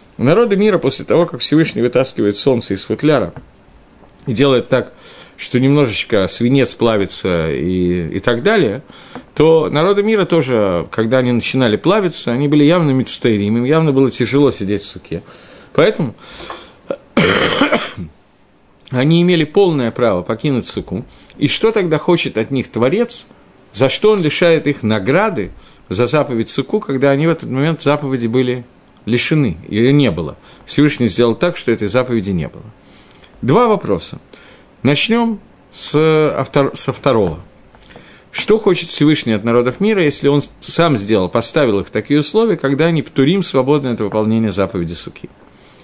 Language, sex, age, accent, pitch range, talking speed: Russian, male, 50-69, native, 115-155 Hz, 150 wpm